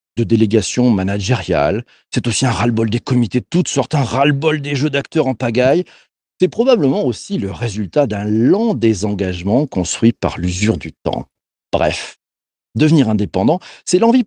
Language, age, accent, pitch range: French, 50-69, French, 115-180 Hz